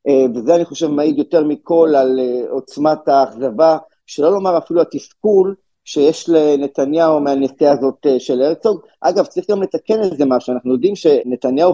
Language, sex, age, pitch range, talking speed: Hebrew, male, 50-69, 140-190 Hz, 145 wpm